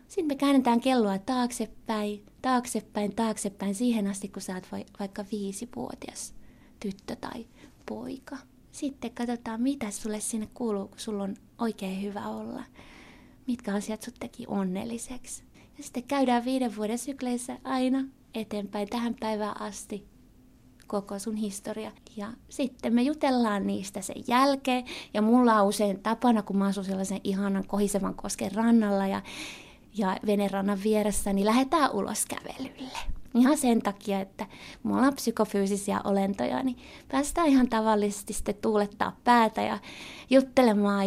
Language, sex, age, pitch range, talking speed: Finnish, female, 20-39, 205-255 Hz, 135 wpm